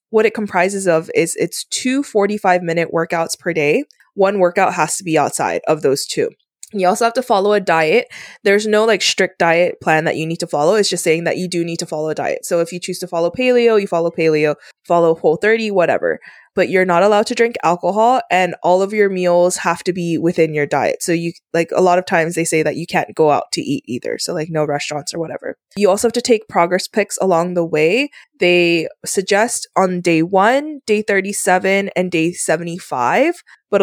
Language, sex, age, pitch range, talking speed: English, female, 20-39, 170-215 Hz, 220 wpm